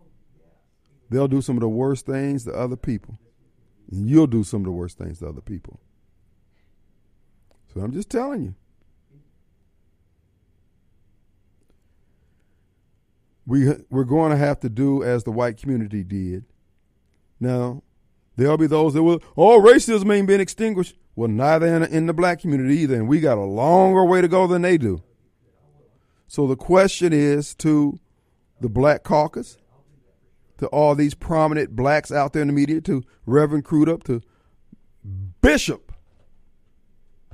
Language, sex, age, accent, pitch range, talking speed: English, male, 50-69, American, 100-160 Hz, 150 wpm